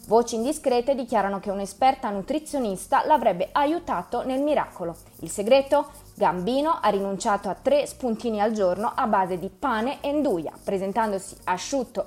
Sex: female